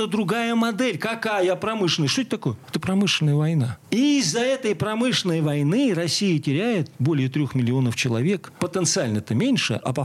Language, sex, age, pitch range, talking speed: Russian, male, 40-59, 140-215 Hz, 155 wpm